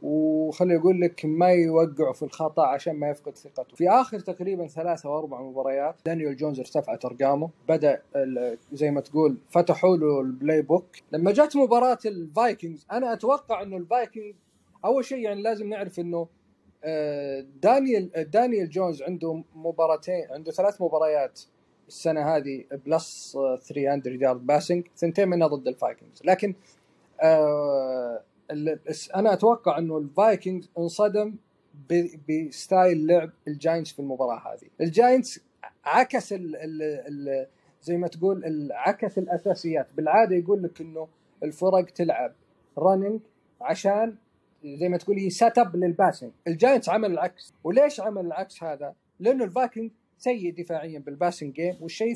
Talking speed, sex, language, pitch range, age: 130 wpm, male, Arabic, 155-205 Hz, 30-49